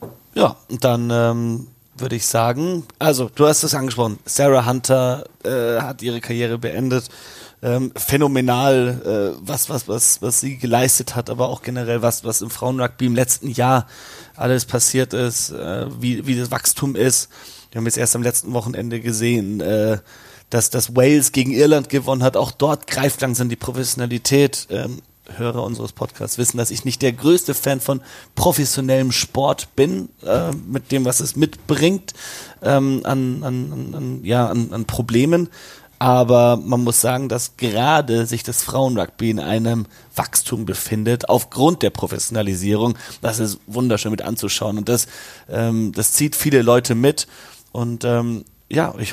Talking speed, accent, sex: 160 wpm, German, male